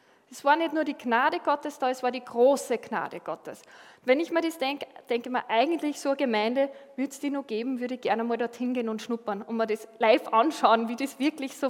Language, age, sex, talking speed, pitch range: German, 20-39, female, 245 wpm, 225-275 Hz